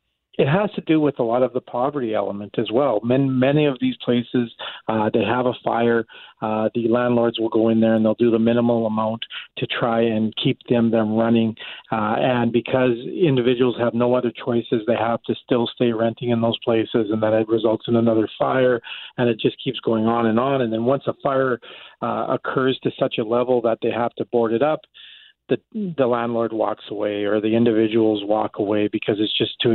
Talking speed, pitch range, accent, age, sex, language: 215 wpm, 110-125 Hz, American, 40-59, male, English